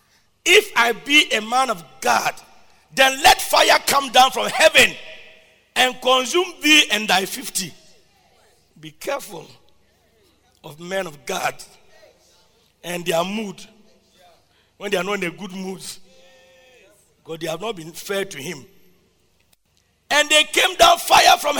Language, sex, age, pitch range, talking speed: English, male, 50-69, 170-285 Hz, 140 wpm